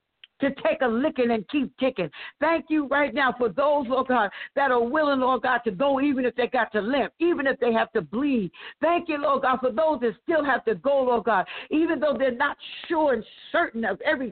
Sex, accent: female, American